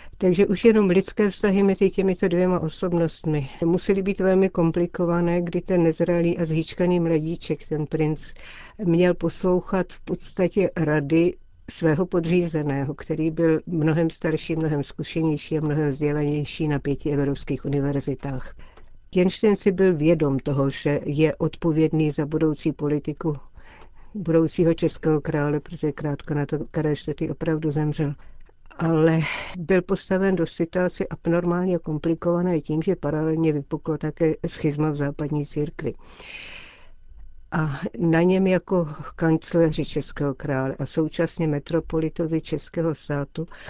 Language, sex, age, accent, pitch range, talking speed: Czech, female, 60-79, native, 150-175 Hz, 125 wpm